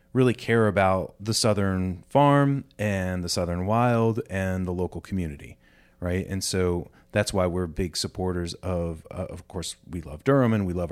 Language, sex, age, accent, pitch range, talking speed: English, male, 30-49, American, 90-105 Hz, 175 wpm